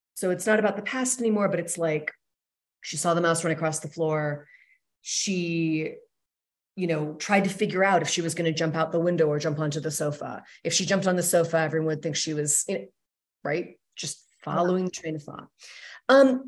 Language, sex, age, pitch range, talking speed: English, female, 30-49, 165-215 Hz, 210 wpm